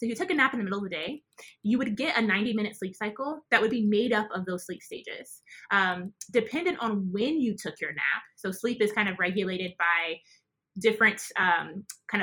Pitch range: 185-225 Hz